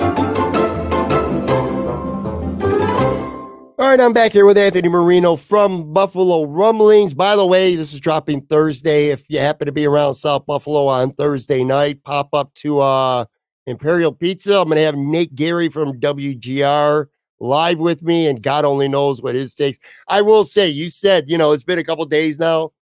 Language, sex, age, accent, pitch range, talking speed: English, male, 50-69, American, 125-160 Hz, 170 wpm